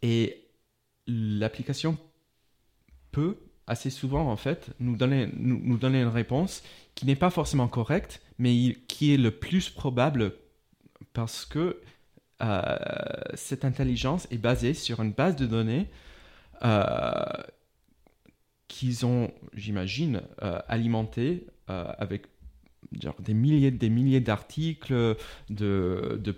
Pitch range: 110-140 Hz